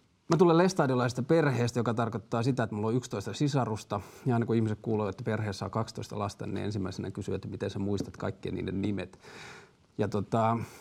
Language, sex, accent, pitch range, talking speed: Finnish, male, native, 110-135 Hz, 190 wpm